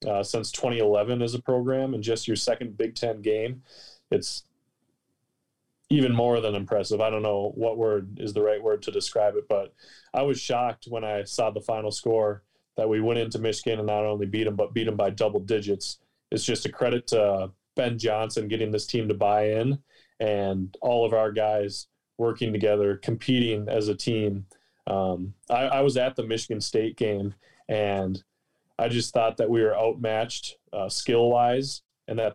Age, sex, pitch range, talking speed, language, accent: 20-39, male, 105-125 Hz, 185 wpm, English, American